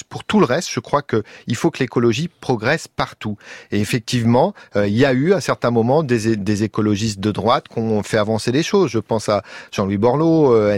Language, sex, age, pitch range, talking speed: French, male, 40-59, 120-150 Hz, 215 wpm